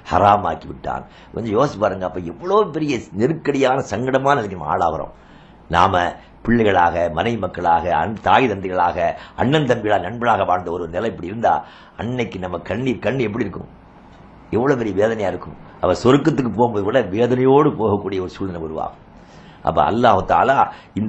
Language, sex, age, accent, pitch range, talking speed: English, male, 60-79, Indian, 90-130 Hz, 85 wpm